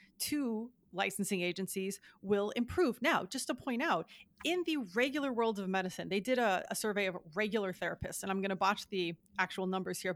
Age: 30-49